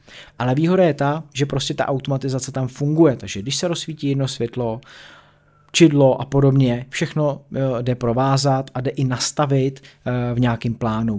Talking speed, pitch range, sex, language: 155 wpm, 120-150 Hz, male, Czech